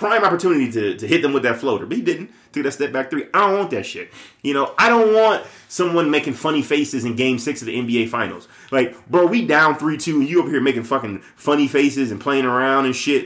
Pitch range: 120-170 Hz